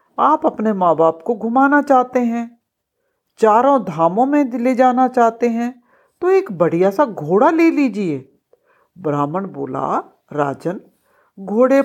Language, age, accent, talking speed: Hindi, 60-79, native, 130 wpm